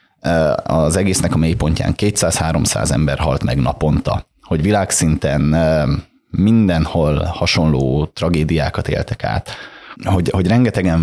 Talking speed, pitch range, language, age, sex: 110 wpm, 80-95 Hz, Hungarian, 30-49, male